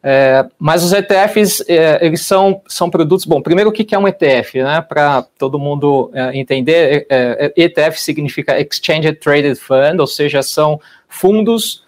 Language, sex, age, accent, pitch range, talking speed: Portuguese, male, 20-39, Brazilian, 135-165 Hz, 160 wpm